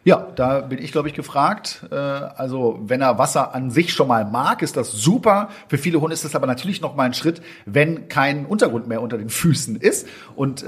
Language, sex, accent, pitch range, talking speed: German, male, German, 130-175 Hz, 220 wpm